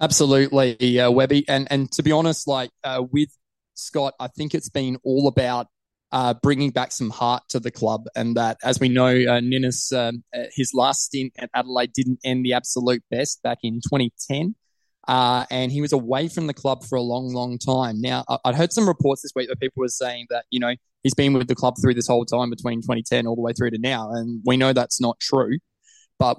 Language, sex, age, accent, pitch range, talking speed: English, male, 20-39, Australian, 120-135 Hz, 225 wpm